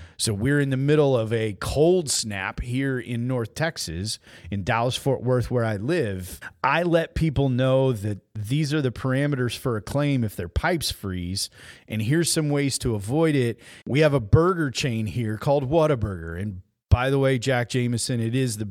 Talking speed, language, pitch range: 190 wpm, English, 105-140 Hz